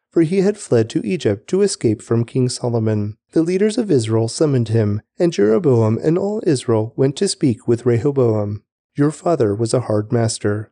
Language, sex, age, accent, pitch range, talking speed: English, male, 30-49, American, 110-165 Hz, 185 wpm